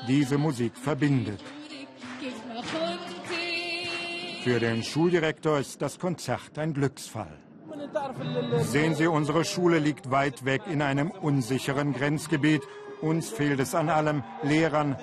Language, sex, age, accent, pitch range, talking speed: German, male, 50-69, German, 130-160 Hz, 110 wpm